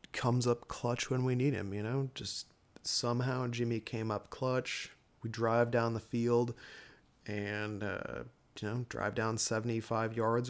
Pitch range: 105-120 Hz